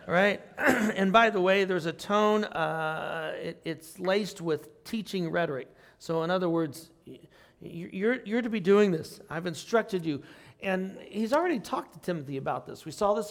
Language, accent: English, American